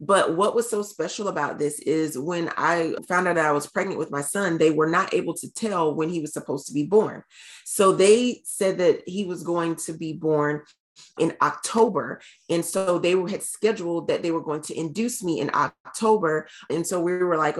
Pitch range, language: 155-200 Hz, English